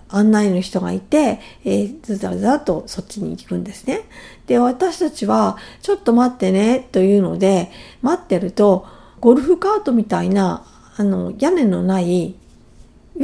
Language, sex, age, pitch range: Japanese, female, 50-69, 195-275 Hz